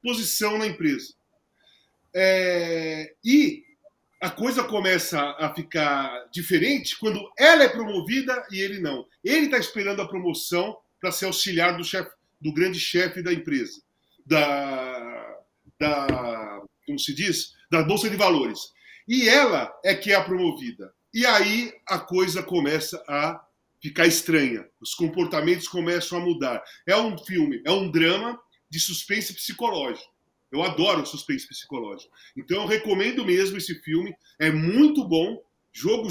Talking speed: 140 wpm